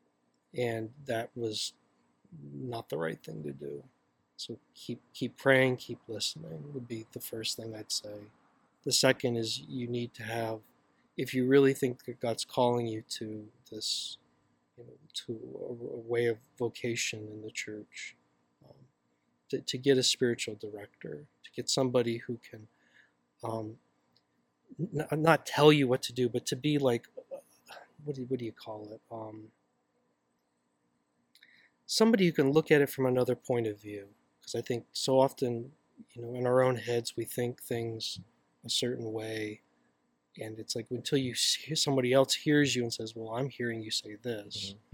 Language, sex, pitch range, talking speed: English, male, 100-130 Hz, 170 wpm